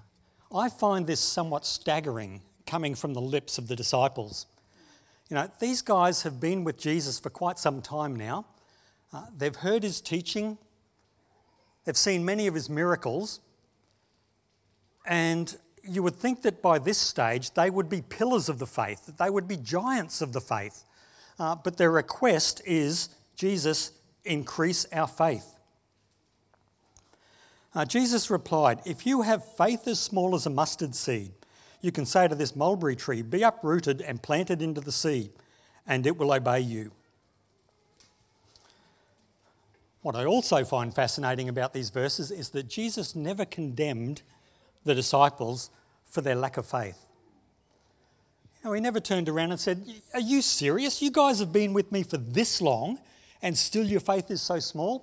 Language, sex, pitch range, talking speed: English, male, 130-195 Hz, 155 wpm